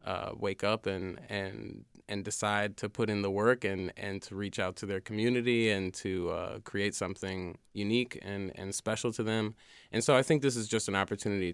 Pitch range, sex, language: 95-110 Hz, male, English